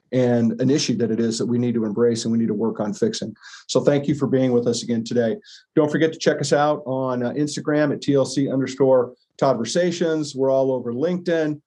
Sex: male